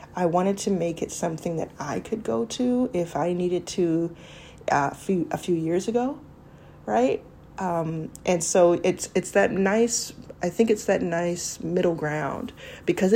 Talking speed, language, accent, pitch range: 170 wpm, English, American, 165-195 Hz